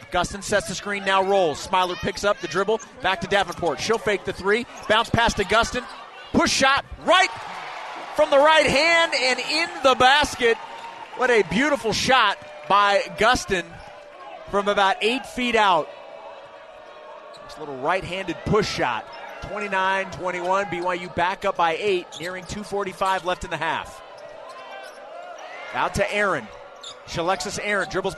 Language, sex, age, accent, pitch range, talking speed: English, male, 30-49, American, 185-235 Hz, 145 wpm